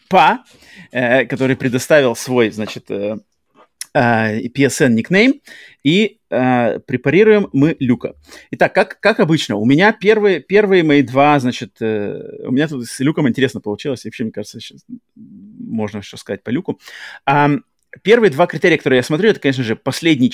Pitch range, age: 120-180 Hz, 30-49